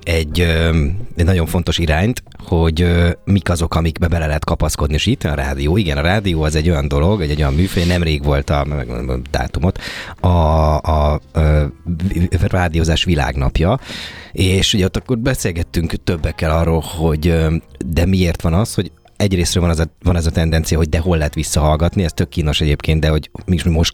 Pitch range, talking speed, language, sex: 80-95 Hz, 180 wpm, Hungarian, male